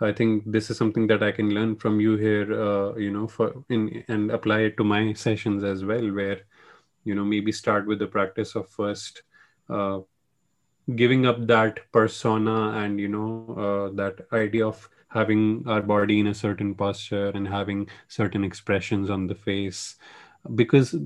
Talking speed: 175 wpm